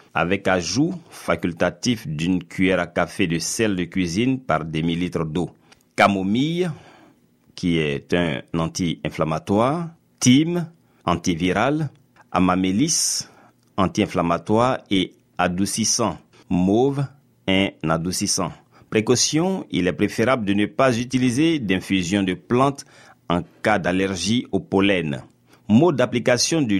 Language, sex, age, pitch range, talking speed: French, male, 50-69, 90-125 Hz, 105 wpm